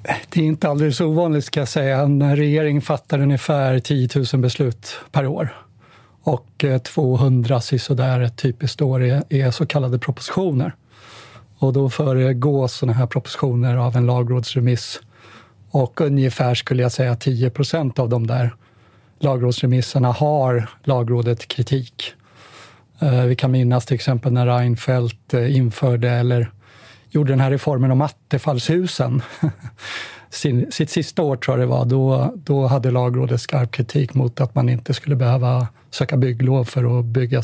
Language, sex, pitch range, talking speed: Swedish, male, 125-145 Hz, 140 wpm